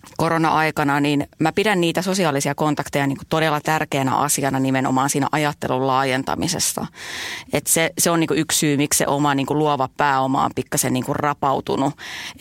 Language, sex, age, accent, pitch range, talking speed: Finnish, female, 30-49, native, 135-155 Hz, 165 wpm